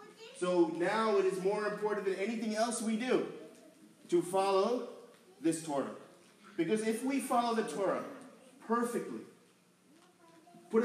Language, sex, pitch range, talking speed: English, male, 190-265 Hz, 125 wpm